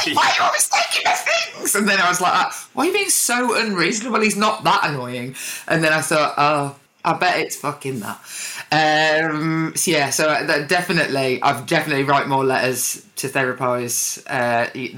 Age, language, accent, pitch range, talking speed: 20-39, English, British, 125-155 Hz, 180 wpm